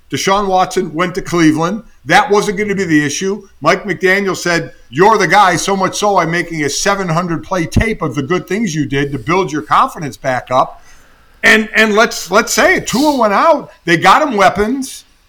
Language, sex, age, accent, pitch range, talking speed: English, male, 50-69, American, 155-210 Hz, 205 wpm